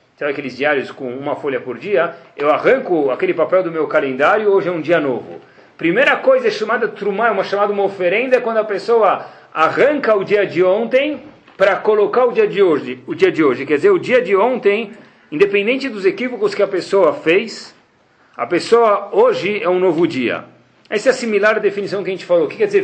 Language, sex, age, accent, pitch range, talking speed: Portuguese, male, 40-59, Brazilian, 150-235 Hz, 205 wpm